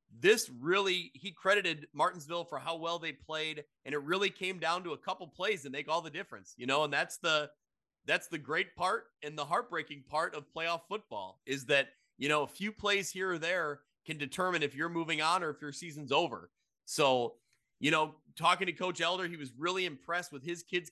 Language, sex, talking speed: English, male, 215 wpm